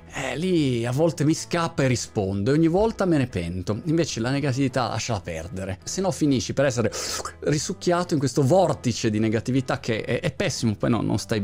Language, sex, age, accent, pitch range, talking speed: Italian, male, 30-49, native, 100-130 Hz, 200 wpm